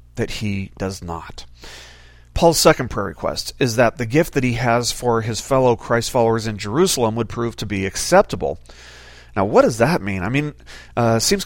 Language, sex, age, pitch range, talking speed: English, male, 40-59, 105-130 Hz, 190 wpm